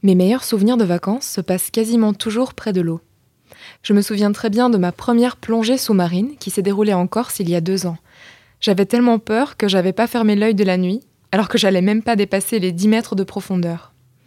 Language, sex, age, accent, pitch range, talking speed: French, female, 20-39, French, 185-225 Hz, 225 wpm